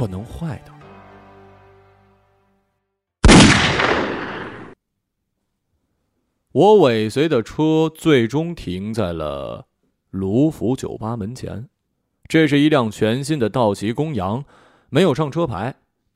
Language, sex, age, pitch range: Chinese, male, 30-49, 100-150 Hz